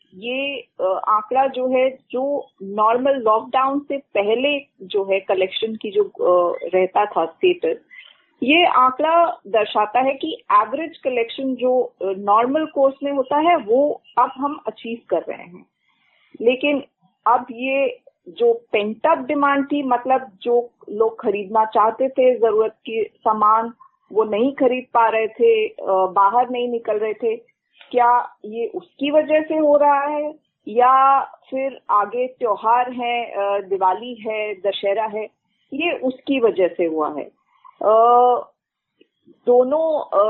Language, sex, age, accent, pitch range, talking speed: Hindi, female, 30-49, native, 220-295 Hz, 130 wpm